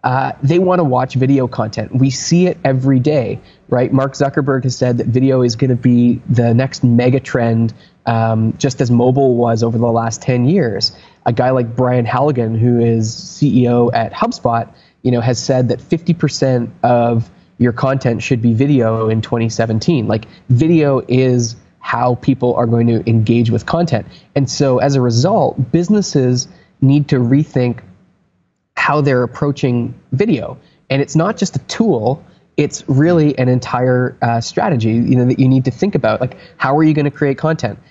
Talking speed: 175 wpm